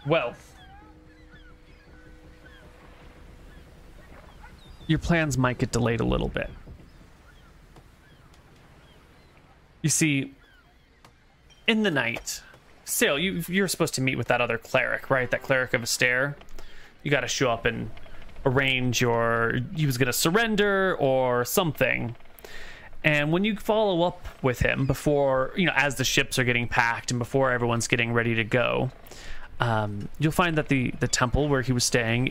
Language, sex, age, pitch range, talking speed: English, male, 30-49, 120-150 Hz, 140 wpm